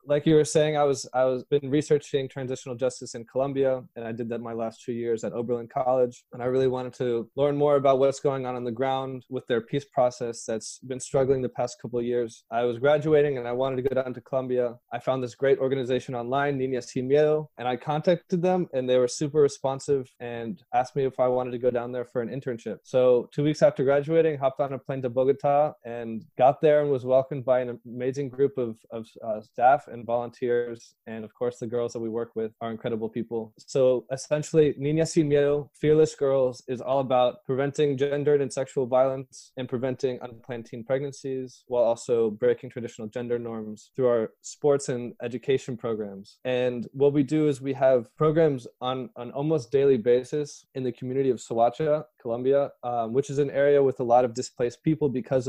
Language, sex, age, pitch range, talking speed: English, male, 20-39, 120-140 Hz, 210 wpm